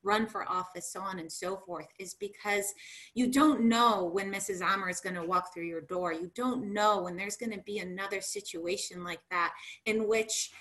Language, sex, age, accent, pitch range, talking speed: English, female, 30-49, American, 180-235 Hz, 210 wpm